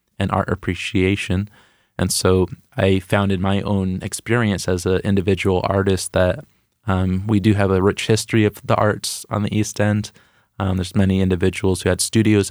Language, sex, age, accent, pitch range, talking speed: English, male, 20-39, American, 95-105 Hz, 175 wpm